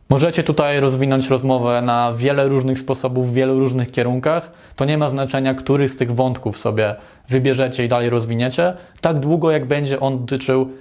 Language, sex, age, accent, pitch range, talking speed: Polish, male, 20-39, native, 120-150 Hz, 170 wpm